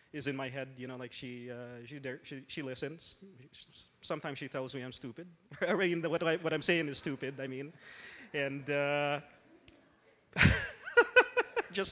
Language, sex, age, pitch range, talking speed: English, male, 20-39, 135-160 Hz, 165 wpm